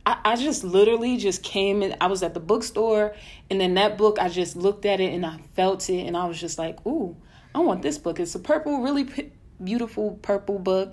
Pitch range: 170-195 Hz